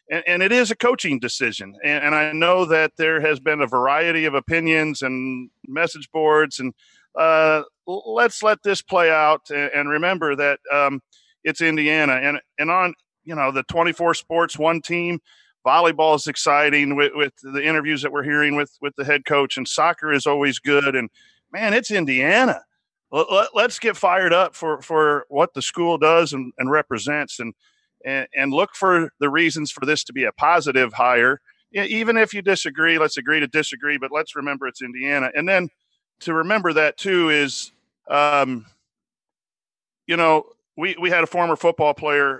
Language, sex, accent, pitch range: English, male, American, 140-165 Hz